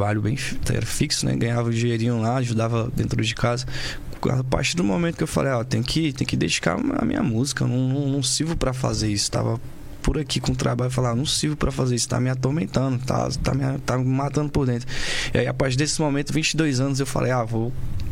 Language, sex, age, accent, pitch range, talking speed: Portuguese, male, 10-29, Brazilian, 120-140 Hz, 250 wpm